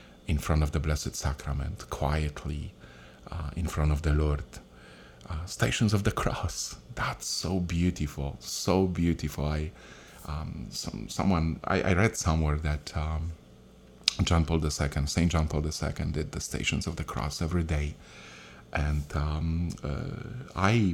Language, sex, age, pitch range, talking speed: English, male, 40-59, 75-90 Hz, 150 wpm